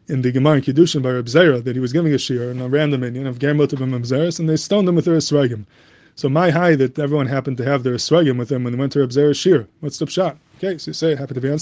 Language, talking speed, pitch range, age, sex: English, 300 wpm, 135-160 Hz, 20-39, male